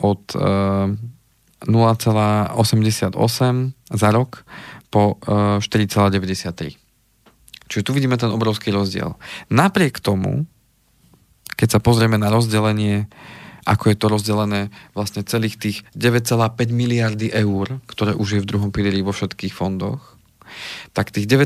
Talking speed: 110 wpm